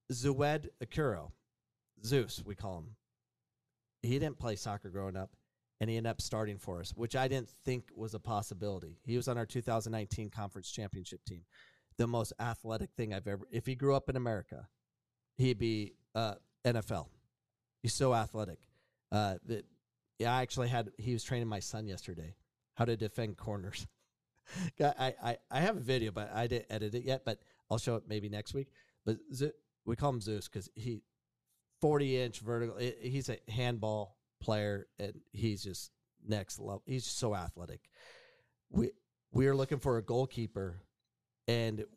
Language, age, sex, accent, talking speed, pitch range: English, 40-59, male, American, 165 wpm, 105-125 Hz